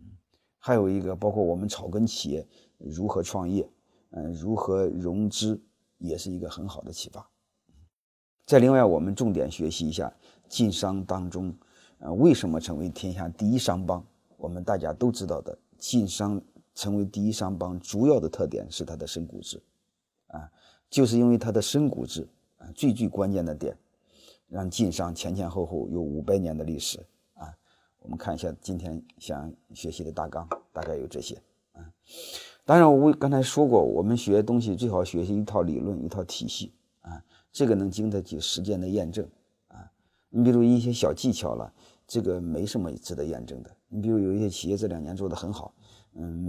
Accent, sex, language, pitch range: native, male, Chinese, 85-110 Hz